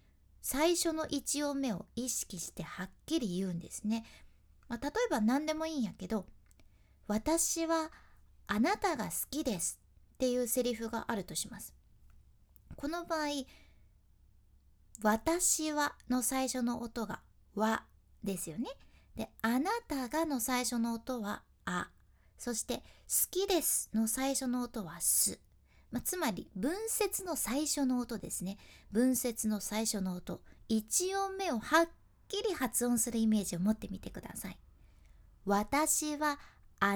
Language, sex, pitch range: Japanese, female, 210-315 Hz